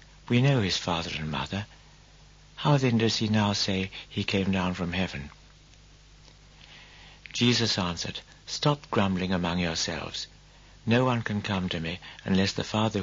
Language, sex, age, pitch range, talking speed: English, male, 60-79, 85-105 Hz, 145 wpm